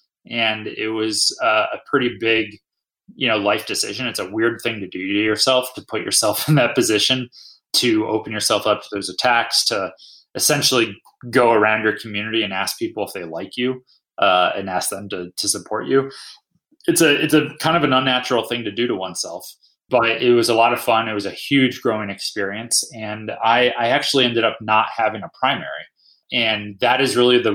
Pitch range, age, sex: 105-130 Hz, 20-39, male